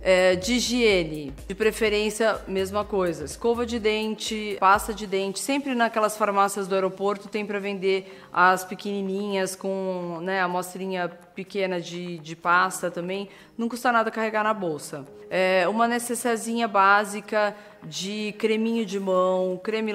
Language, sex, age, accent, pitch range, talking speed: Portuguese, female, 20-39, Brazilian, 175-210 Hz, 140 wpm